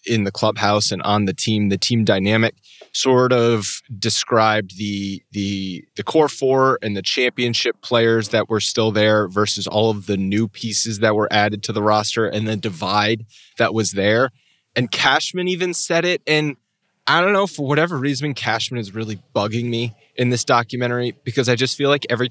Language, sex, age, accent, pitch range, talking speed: English, male, 20-39, American, 110-145 Hz, 190 wpm